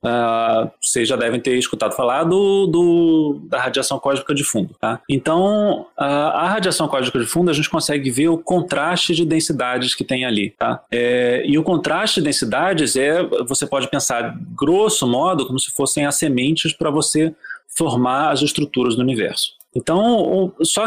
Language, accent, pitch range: Portuguese, Brazilian, 125-170 Hz